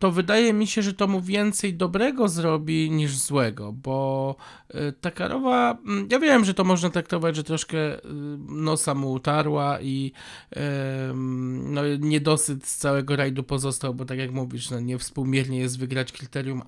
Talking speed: 145 wpm